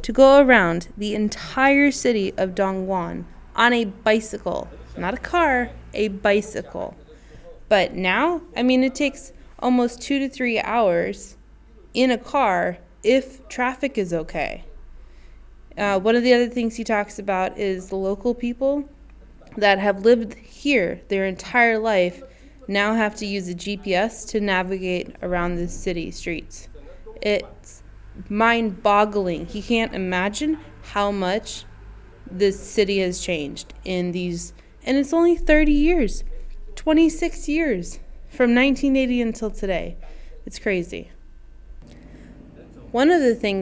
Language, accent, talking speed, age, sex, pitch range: English, American, 135 wpm, 20-39, female, 190-250 Hz